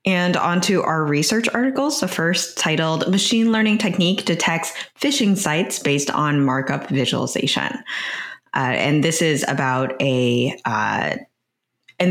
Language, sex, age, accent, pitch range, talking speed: English, female, 20-39, American, 135-170 Hz, 135 wpm